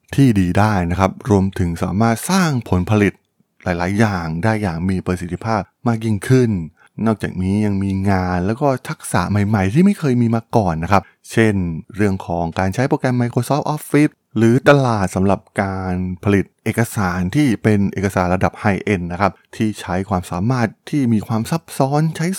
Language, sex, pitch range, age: Thai, male, 95-120 Hz, 20-39